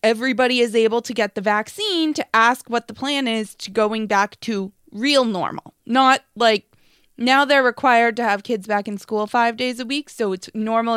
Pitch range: 200-240 Hz